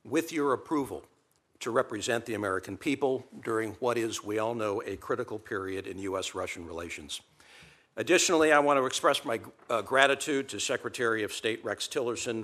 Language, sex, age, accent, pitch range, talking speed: English, male, 60-79, American, 100-135 Hz, 165 wpm